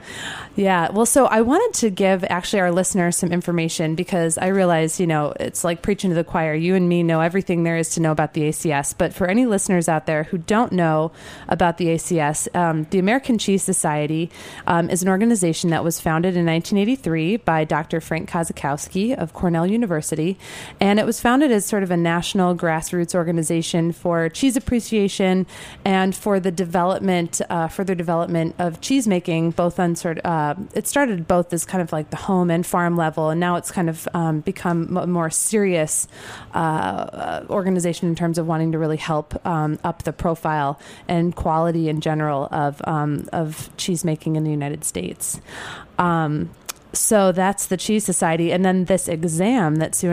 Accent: American